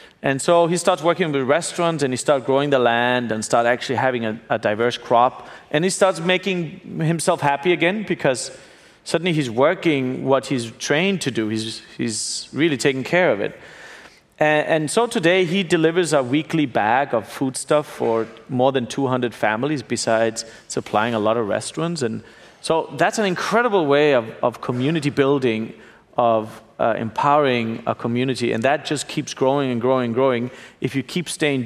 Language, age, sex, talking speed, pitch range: English, 30-49, male, 180 wpm, 120-155 Hz